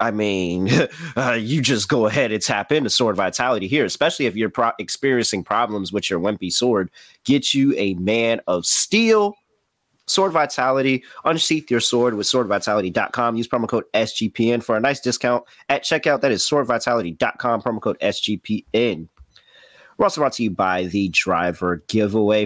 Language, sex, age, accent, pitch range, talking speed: English, male, 30-49, American, 100-130 Hz, 160 wpm